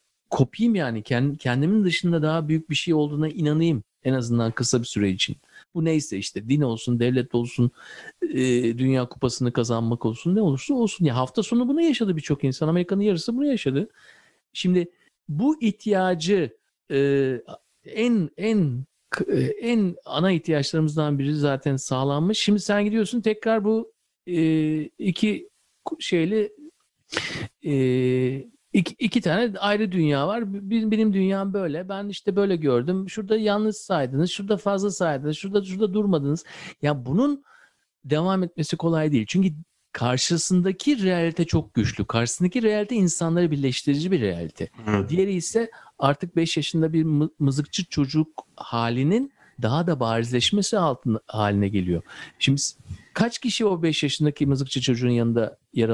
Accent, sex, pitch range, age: native, male, 135-205 Hz, 50-69